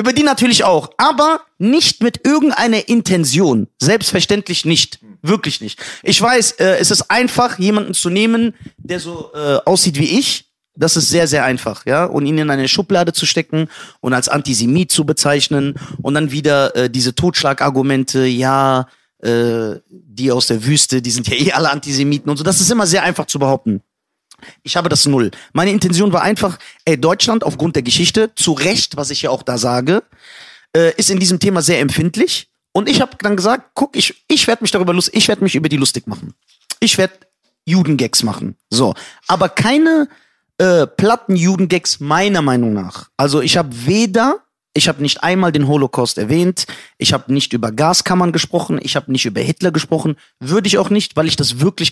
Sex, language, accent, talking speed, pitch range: male, German, German, 190 wpm, 135-200 Hz